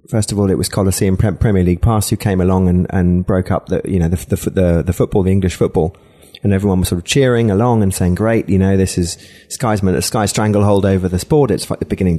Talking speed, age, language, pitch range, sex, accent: 250 wpm, 30-49, English, 95-110 Hz, male, British